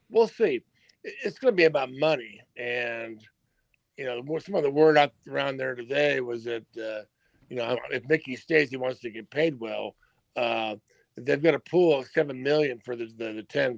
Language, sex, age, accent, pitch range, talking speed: English, male, 50-69, American, 120-160 Hz, 200 wpm